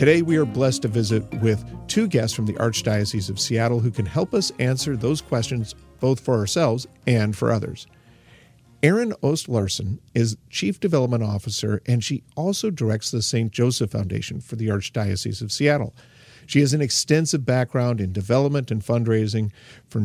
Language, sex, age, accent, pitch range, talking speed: English, male, 50-69, American, 110-135 Hz, 170 wpm